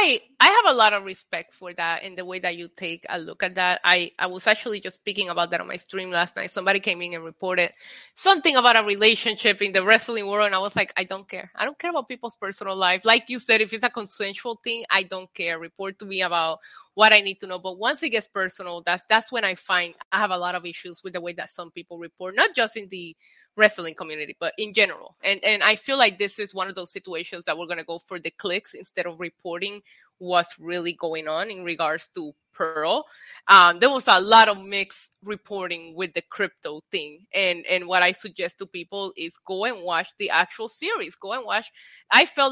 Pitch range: 180-225 Hz